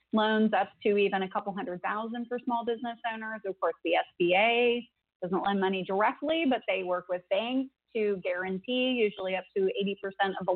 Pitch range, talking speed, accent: 190-235 Hz, 195 wpm, American